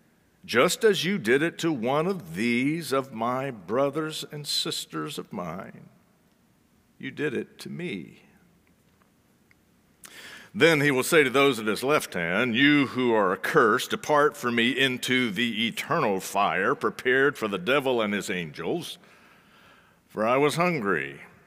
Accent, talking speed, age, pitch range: American, 150 wpm, 50-69, 130-210 Hz